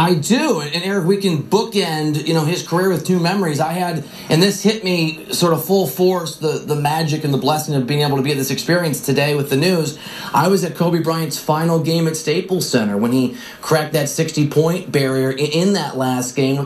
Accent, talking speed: American, 225 wpm